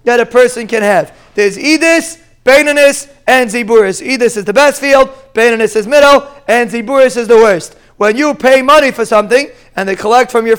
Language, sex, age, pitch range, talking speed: English, male, 30-49, 215-270 Hz, 195 wpm